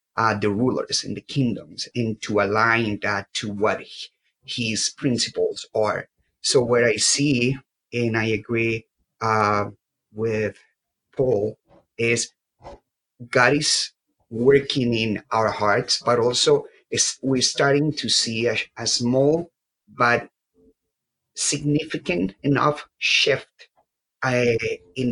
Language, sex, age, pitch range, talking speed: English, male, 30-49, 110-130 Hz, 110 wpm